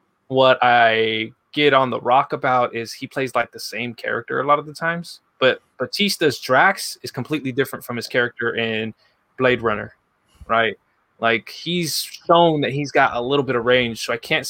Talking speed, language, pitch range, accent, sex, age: 190 wpm, English, 115-130 Hz, American, male, 20-39